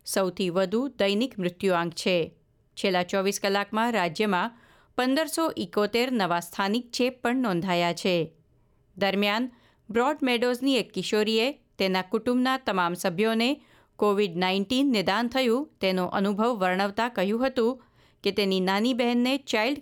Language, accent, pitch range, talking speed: Gujarati, native, 185-240 Hz, 100 wpm